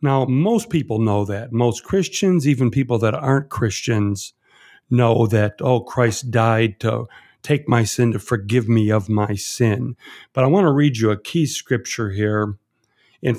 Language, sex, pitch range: English, male, 115-165 Hz